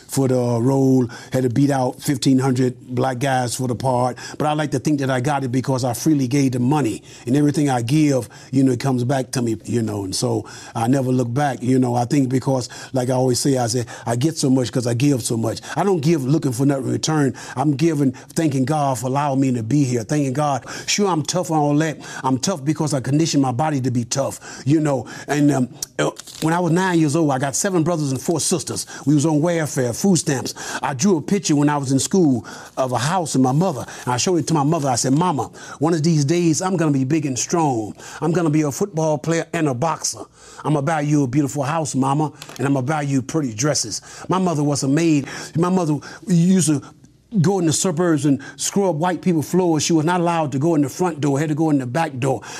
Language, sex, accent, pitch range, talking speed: English, male, American, 135-170 Hz, 250 wpm